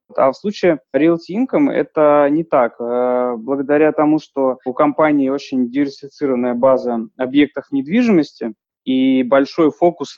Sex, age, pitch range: male, 20-39, 130-155 Hz